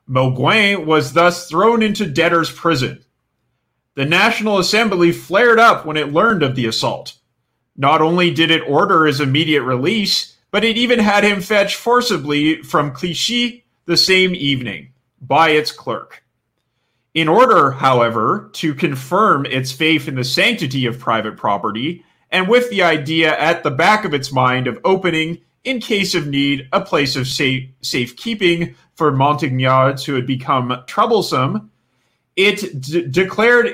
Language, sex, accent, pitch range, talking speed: English, male, American, 135-195 Hz, 150 wpm